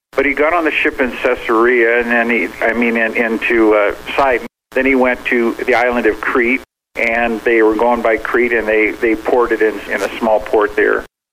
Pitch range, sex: 110-130 Hz, male